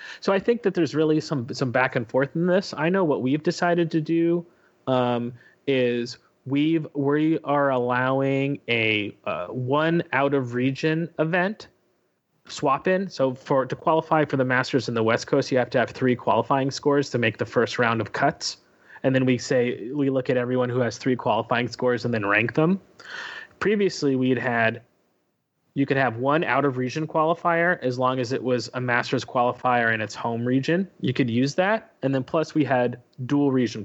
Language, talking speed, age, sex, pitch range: English, 195 wpm, 30-49, male, 120-150 Hz